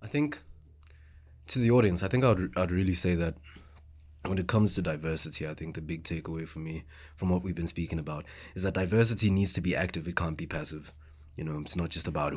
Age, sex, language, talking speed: 20-39, male, English, 230 wpm